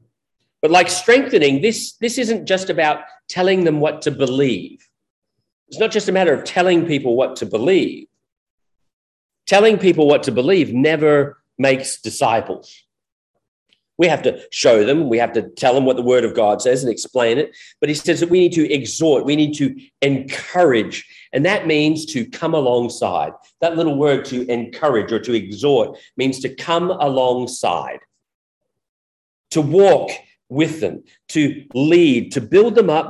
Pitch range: 130-175 Hz